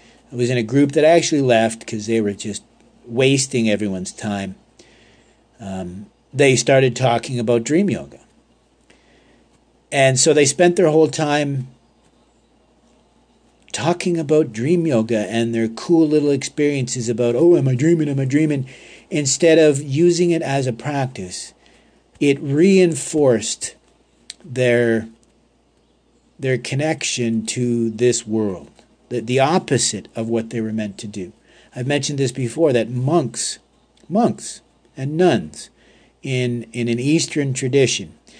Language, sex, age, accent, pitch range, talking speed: English, male, 50-69, American, 110-145 Hz, 130 wpm